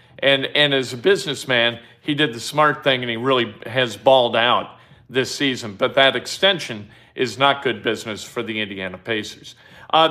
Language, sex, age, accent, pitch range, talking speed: English, male, 50-69, American, 130-170 Hz, 180 wpm